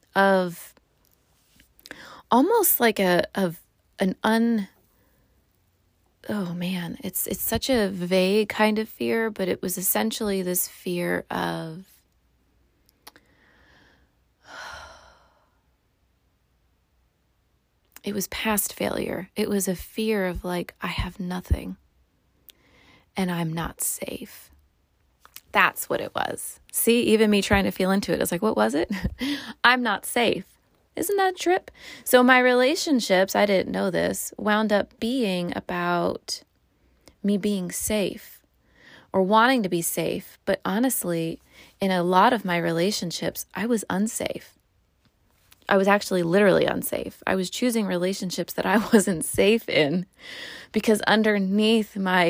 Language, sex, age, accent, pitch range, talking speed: English, female, 20-39, American, 180-220 Hz, 130 wpm